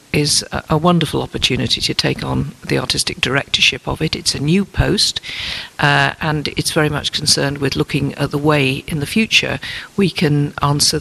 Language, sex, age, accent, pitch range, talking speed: English, female, 50-69, British, 140-165 Hz, 180 wpm